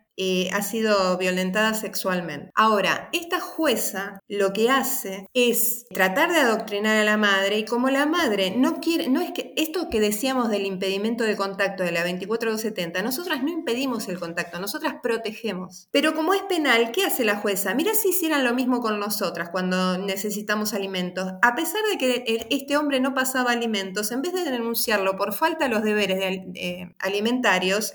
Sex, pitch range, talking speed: female, 195-285 Hz, 170 wpm